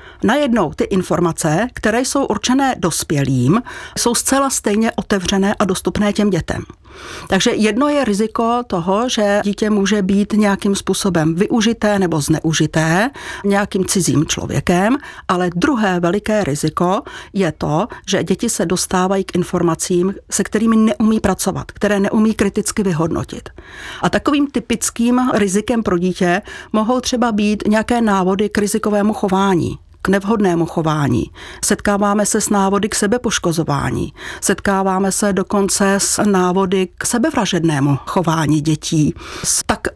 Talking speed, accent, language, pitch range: 130 wpm, native, Czech, 180-220 Hz